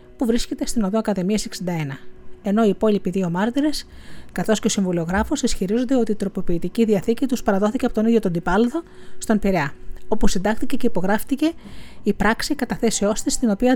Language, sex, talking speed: Greek, female, 170 wpm